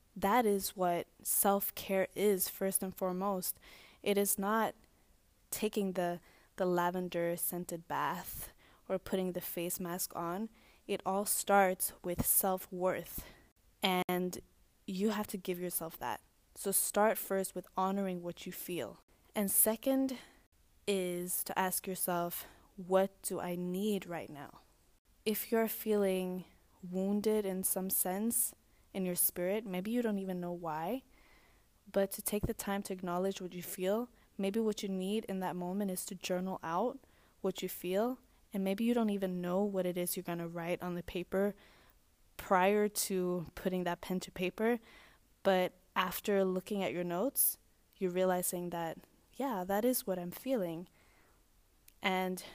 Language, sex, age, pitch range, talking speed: English, female, 10-29, 180-205 Hz, 150 wpm